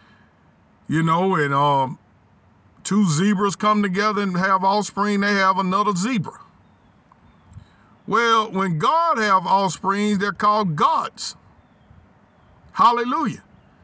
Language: English